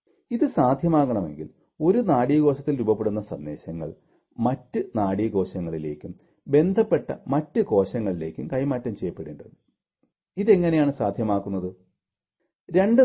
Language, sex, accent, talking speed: Malayalam, male, native, 75 wpm